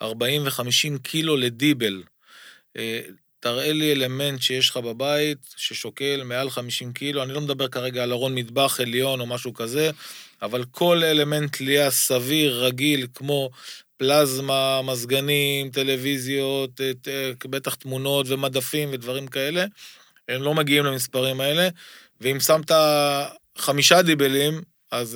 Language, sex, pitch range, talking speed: Hebrew, male, 130-150 Hz, 120 wpm